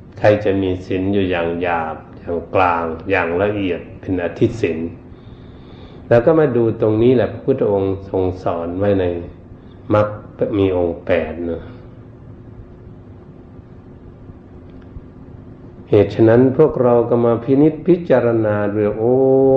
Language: Thai